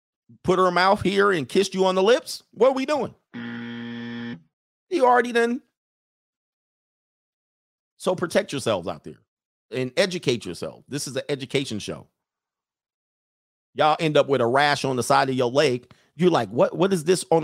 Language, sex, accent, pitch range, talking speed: English, male, American, 120-165 Hz, 170 wpm